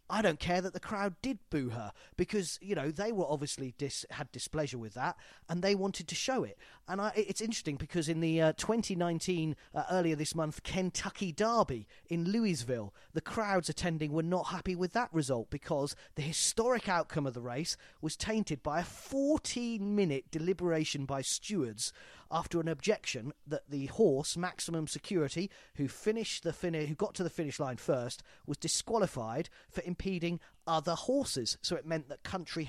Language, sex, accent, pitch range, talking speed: English, male, British, 150-215 Hz, 180 wpm